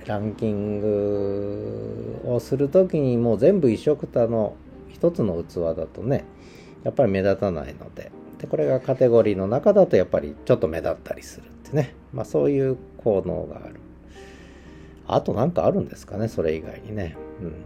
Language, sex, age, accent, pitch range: Japanese, male, 40-59, native, 85-115 Hz